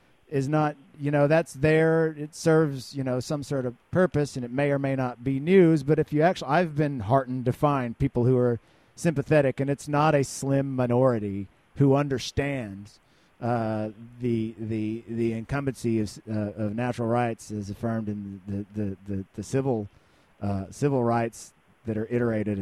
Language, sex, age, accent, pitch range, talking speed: English, male, 40-59, American, 110-135 Hz, 180 wpm